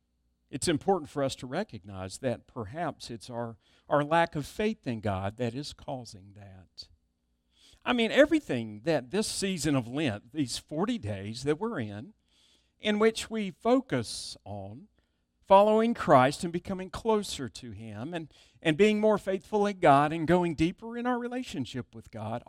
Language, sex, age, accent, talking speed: English, male, 50-69, American, 165 wpm